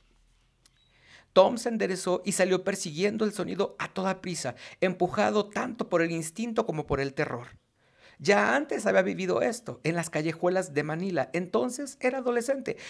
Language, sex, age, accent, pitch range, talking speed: Spanish, male, 50-69, Mexican, 145-200 Hz, 155 wpm